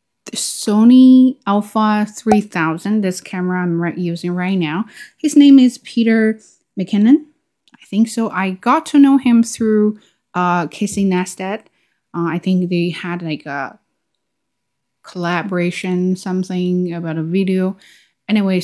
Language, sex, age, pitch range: Chinese, female, 20-39, 180-235 Hz